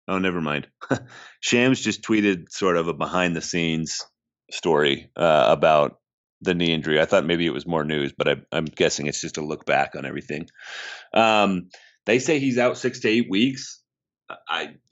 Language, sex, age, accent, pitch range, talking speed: English, male, 30-49, American, 85-105 Hz, 185 wpm